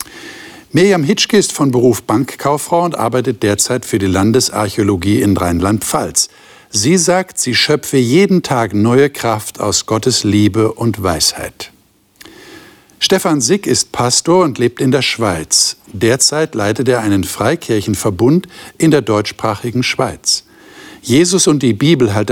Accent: German